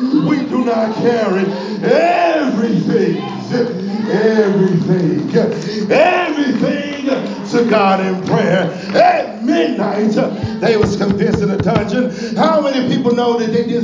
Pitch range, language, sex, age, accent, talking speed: 185-245 Hz, English, male, 40-59, American, 115 wpm